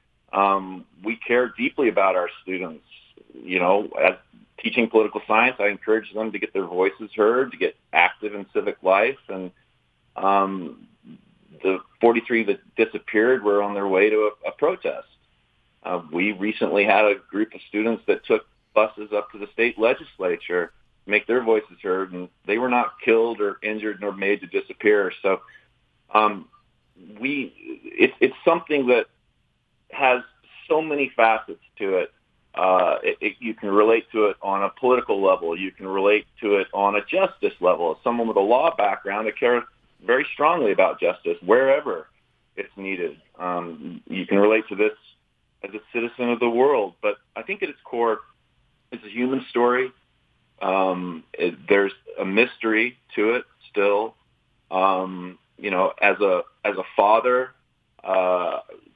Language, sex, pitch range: English, male, 100-145 Hz